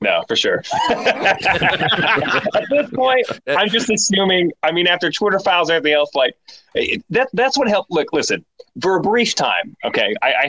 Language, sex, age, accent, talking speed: English, male, 30-49, American, 170 wpm